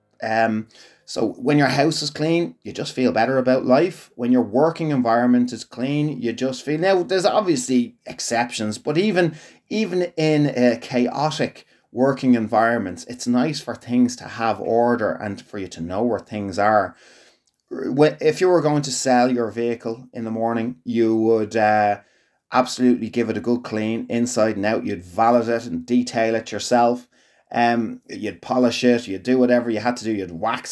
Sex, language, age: male, English, 30-49